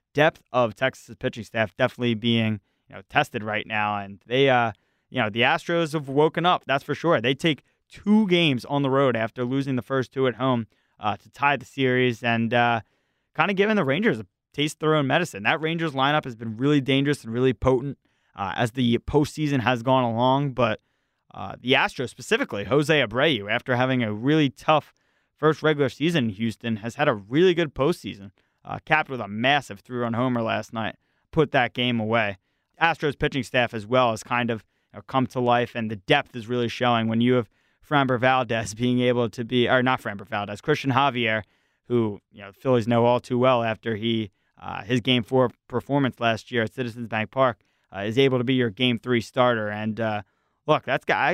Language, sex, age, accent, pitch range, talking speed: English, male, 20-39, American, 115-140 Hz, 210 wpm